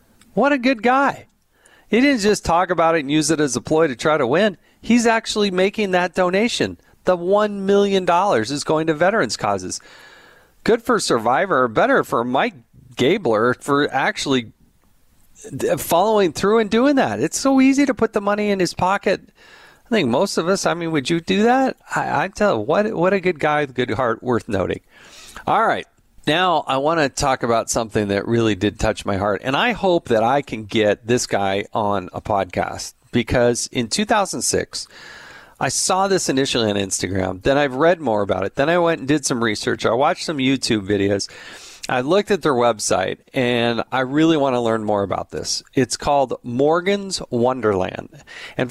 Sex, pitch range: male, 120-195 Hz